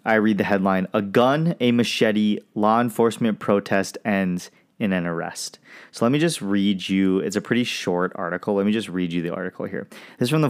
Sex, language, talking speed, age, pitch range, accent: male, English, 215 wpm, 20-39, 95-115 Hz, American